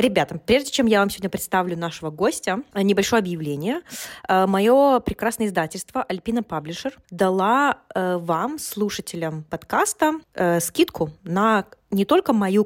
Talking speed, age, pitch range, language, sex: 120 wpm, 20-39, 175-230 Hz, Russian, female